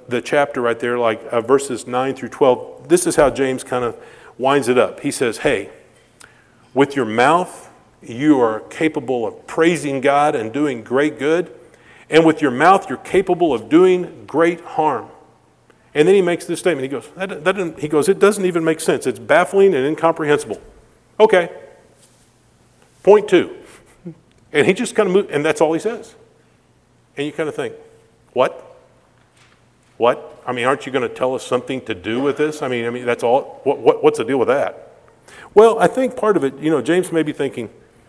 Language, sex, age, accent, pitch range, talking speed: English, male, 40-59, American, 125-185 Hz, 195 wpm